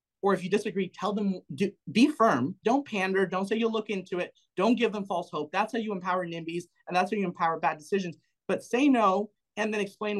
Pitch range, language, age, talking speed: 180-220 Hz, English, 30-49, 235 wpm